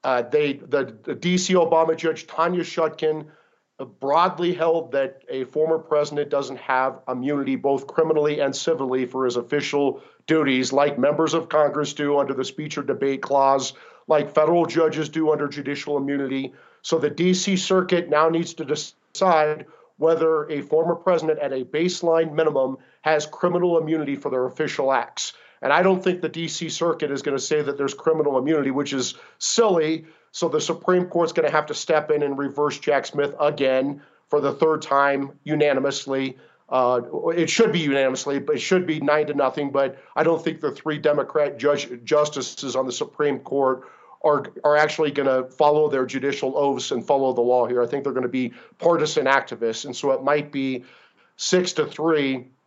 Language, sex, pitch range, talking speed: English, male, 135-160 Hz, 180 wpm